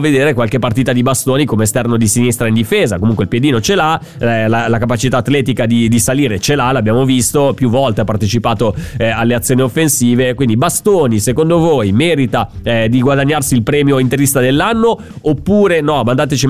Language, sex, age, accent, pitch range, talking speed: Italian, male, 30-49, native, 120-155 Hz, 170 wpm